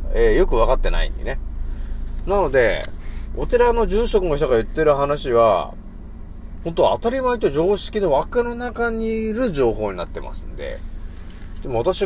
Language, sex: Japanese, male